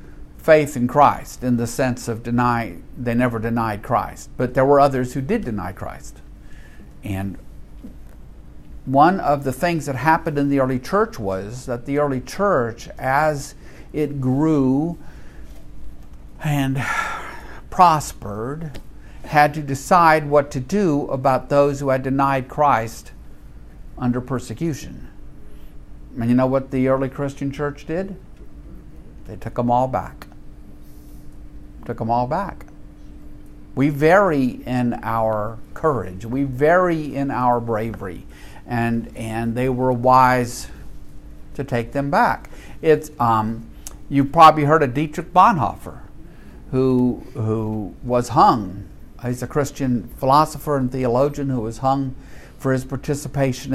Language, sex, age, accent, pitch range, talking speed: English, male, 50-69, American, 115-145 Hz, 130 wpm